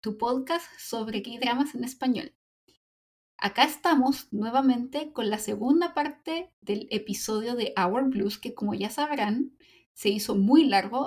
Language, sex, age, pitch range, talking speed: Spanish, female, 20-39, 215-270 Hz, 140 wpm